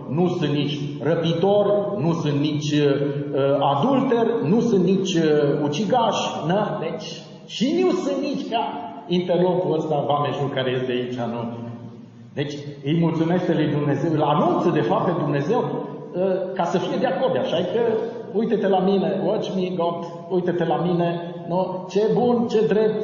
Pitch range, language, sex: 140-190 Hz, Romanian, male